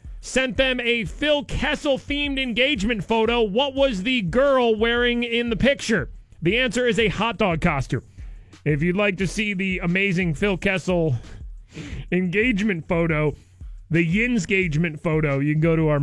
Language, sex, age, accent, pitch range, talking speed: English, male, 30-49, American, 155-200 Hz, 155 wpm